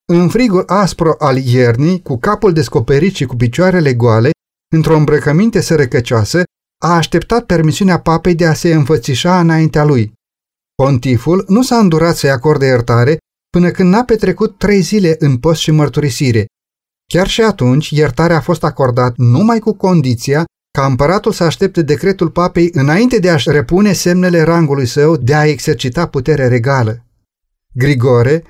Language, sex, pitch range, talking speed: Romanian, male, 130-170 Hz, 150 wpm